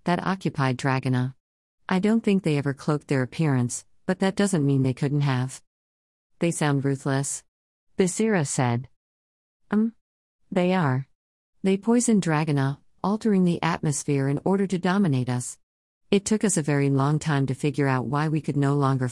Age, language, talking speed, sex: 40-59, English, 165 wpm, female